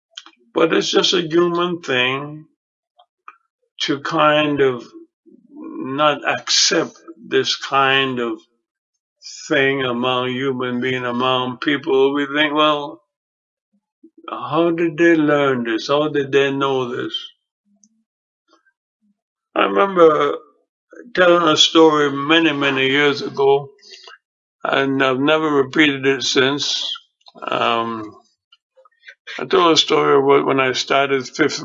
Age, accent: 60-79, American